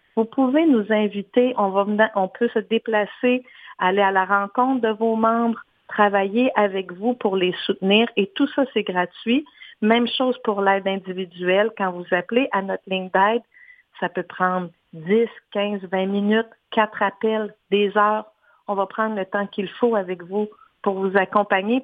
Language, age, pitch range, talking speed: French, 50-69, 190-230 Hz, 175 wpm